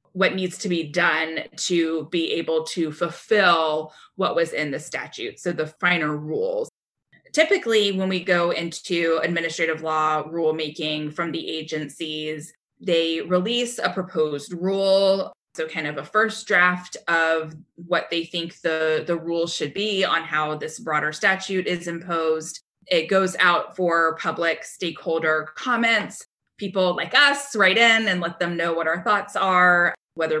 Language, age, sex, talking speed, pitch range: English, 20-39, female, 155 wpm, 160-190 Hz